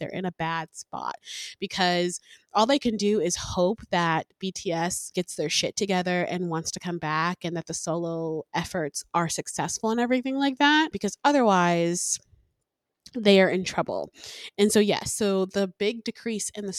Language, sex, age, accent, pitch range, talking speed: English, female, 20-39, American, 175-205 Hz, 175 wpm